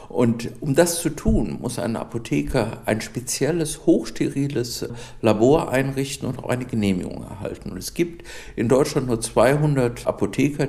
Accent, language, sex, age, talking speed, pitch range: German, German, male, 60-79, 145 wpm, 105-140 Hz